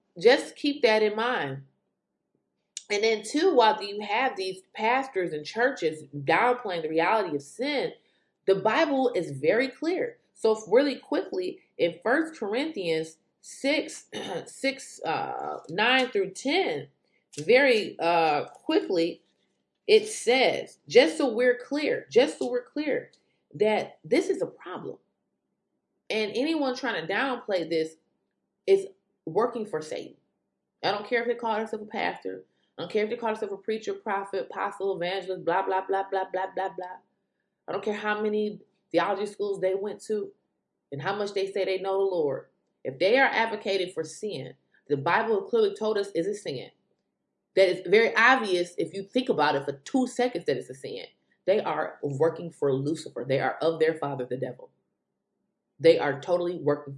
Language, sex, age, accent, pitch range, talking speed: English, female, 30-49, American, 170-265 Hz, 165 wpm